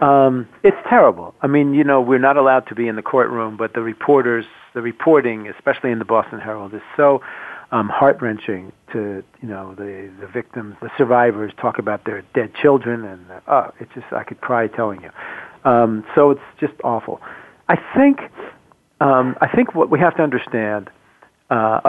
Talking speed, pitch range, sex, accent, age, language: 185 wpm, 110-145 Hz, male, American, 50-69, English